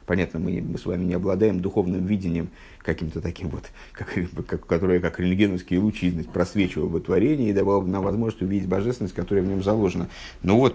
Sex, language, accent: male, Russian, native